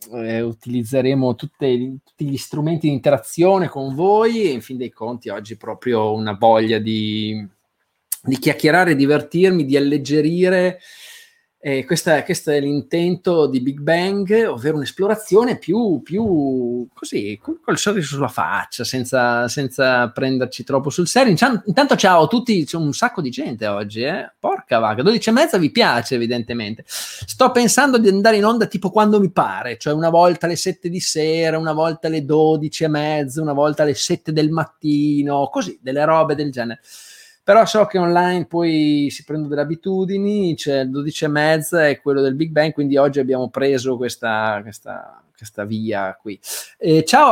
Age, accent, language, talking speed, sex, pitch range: 20-39, native, Italian, 165 wpm, male, 130-185 Hz